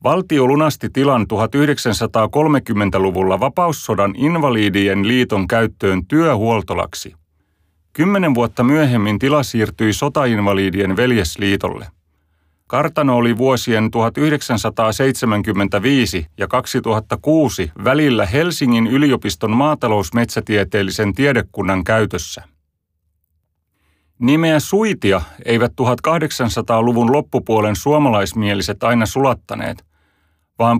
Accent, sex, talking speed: native, male, 70 wpm